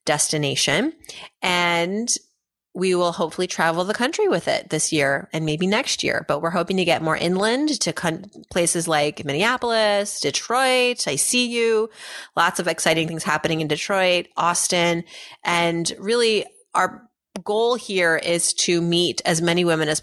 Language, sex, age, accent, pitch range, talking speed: English, female, 30-49, American, 155-190 Hz, 155 wpm